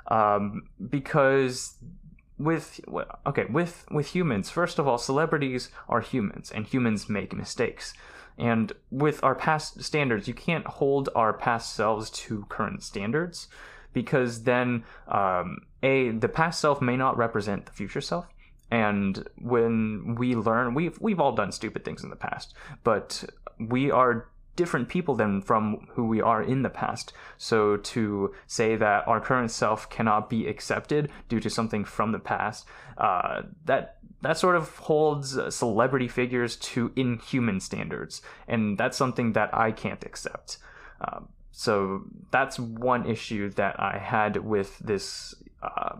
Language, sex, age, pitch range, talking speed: English, male, 20-39, 110-135 Hz, 150 wpm